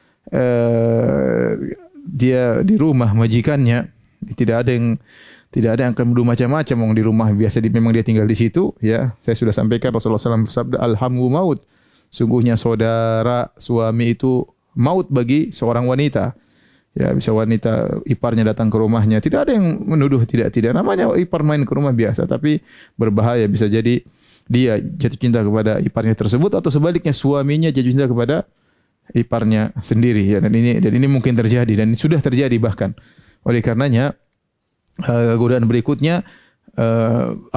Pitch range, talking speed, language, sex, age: 115-145 Hz, 145 wpm, Indonesian, male, 30-49